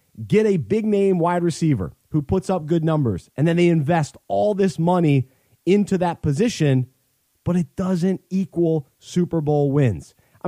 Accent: American